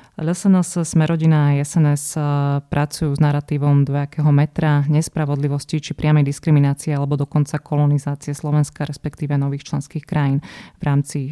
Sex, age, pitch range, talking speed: female, 20-39, 145-160 Hz, 120 wpm